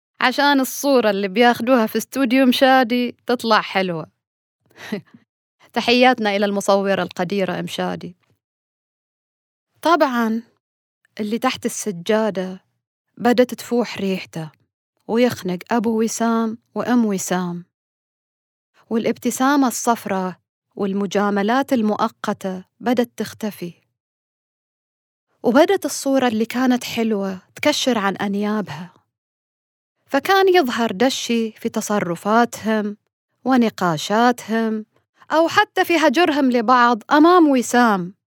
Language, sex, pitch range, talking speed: Arabic, female, 195-250 Hz, 85 wpm